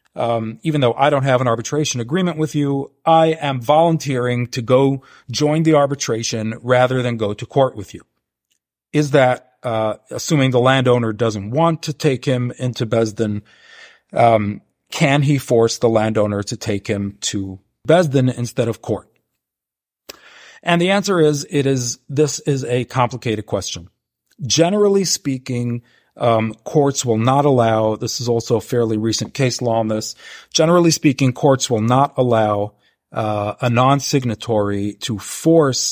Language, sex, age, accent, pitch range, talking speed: English, male, 40-59, American, 110-145 Hz, 160 wpm